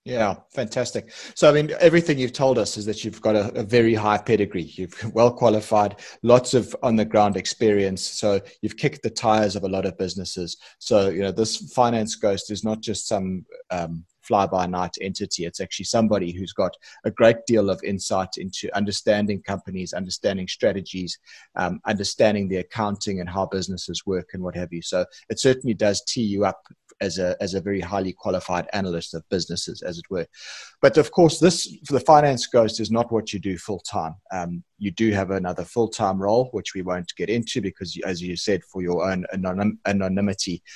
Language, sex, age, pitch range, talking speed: English, male, 30-49, 95-115 Hz, 190 wpm